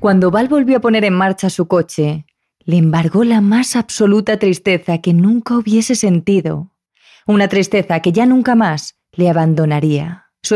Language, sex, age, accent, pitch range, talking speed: Spanish, female, 20-39, Spanish, 175-225 Hz, 160 wpm